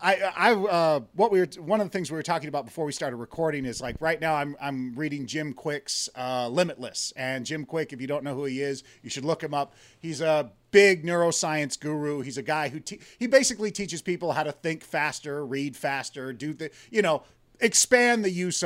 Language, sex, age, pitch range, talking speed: English, male, 40-59, 135-180 Hz, 230 wpm